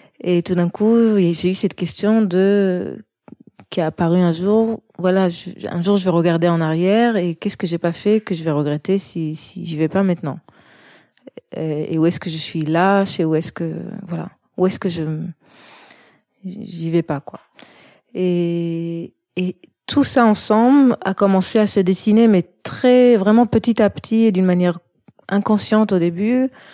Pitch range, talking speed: 170-205 Hz, 180 wpm